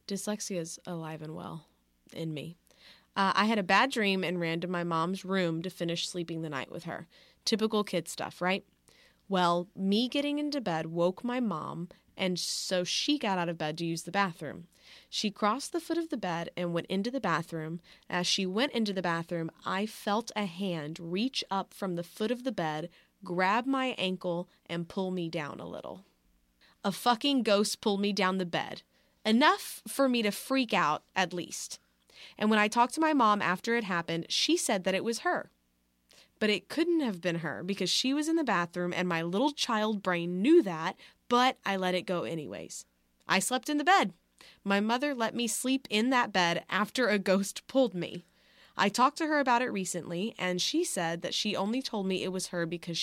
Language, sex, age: English, female, 20-39